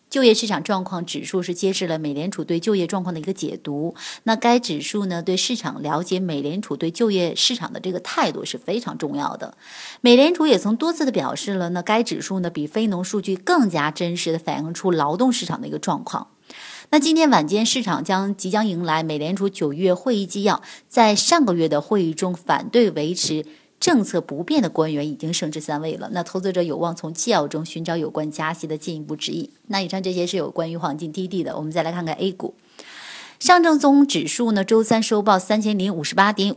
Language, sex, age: Chinese, female, 30-49